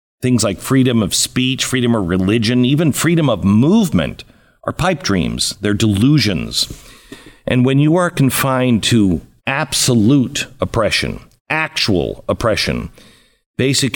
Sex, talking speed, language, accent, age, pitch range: male, 120 wpm, English, American, 50-69, 105-135 Hz